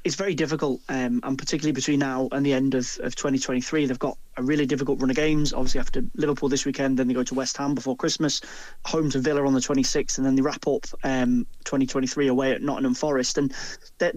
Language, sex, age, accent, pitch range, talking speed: English, male, 20-39, British, 130-150 Hz, 230 wpm